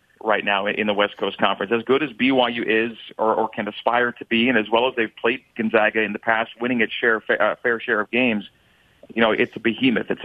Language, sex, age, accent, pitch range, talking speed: English, male, 40-59, American, 110-130 Hz, 250 wpm